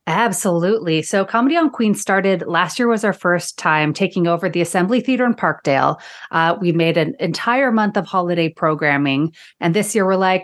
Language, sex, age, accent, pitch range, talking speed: English, female, 30-49, American, 160-210 Hz, 190 wpm